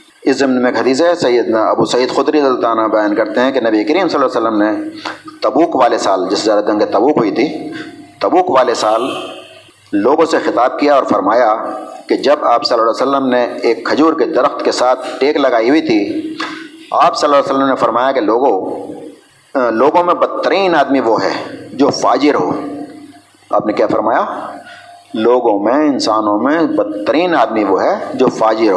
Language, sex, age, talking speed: Urdu, male, 50-69, 185 wpm